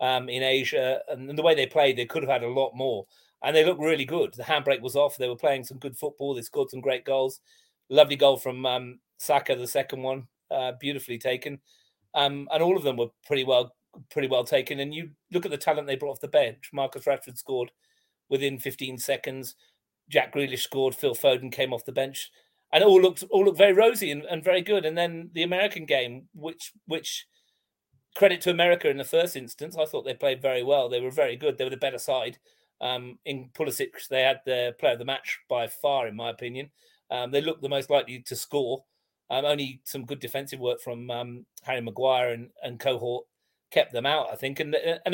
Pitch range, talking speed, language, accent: 125-165 Hz, 220 wpm, English, British